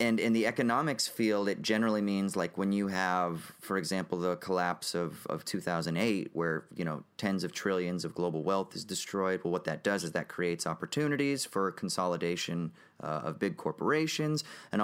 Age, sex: 30-49, male